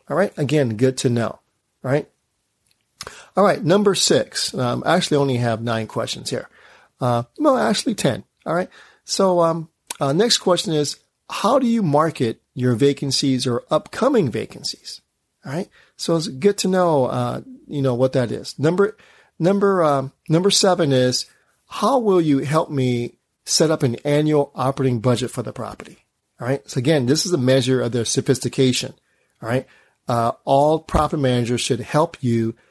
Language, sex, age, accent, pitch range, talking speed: English, male, 40-59, American, 125-160 Hz, 160 wpm